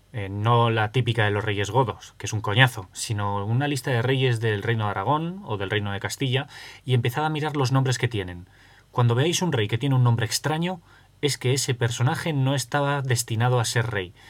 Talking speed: 220 wpm